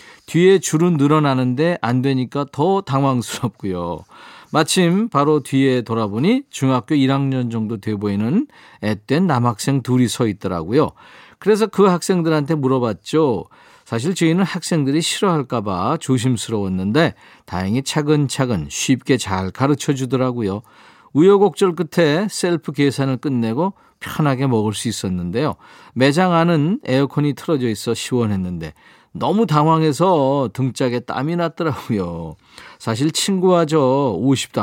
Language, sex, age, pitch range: Korean, male, 40-59, 115-160 Hz